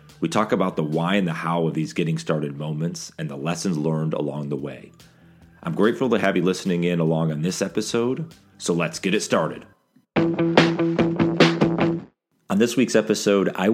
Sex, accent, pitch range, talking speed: male, American, 80-105 Hz, 180 wpm